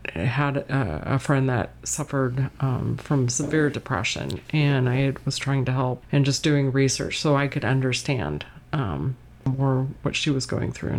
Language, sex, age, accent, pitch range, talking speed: English, female, 40-59, American, 130-155 Hz, 175 wpm